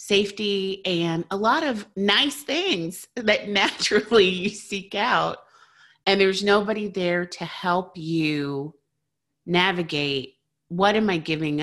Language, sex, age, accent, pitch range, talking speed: English, female, 30-49, American, 145-185 Hz, 125 wpm